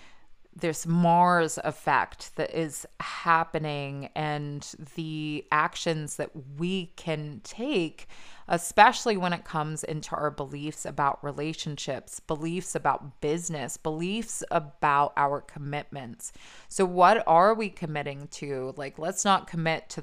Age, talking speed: 20-39, 120 wpm